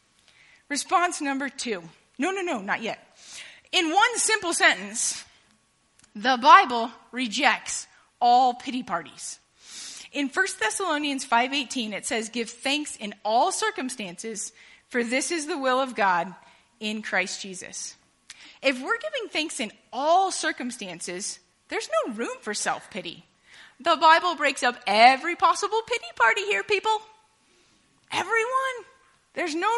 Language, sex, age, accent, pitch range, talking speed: English, female, 30-49, American, 215-325 Hz, 130 wpm